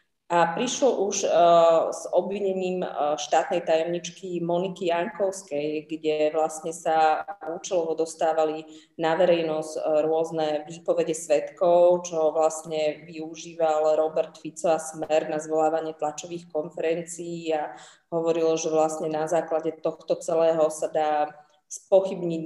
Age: 20-39